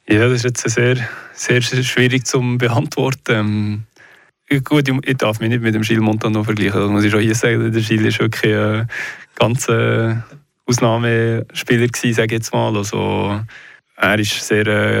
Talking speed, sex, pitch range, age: 160 wpm, male, 110-125 Hz, 20-39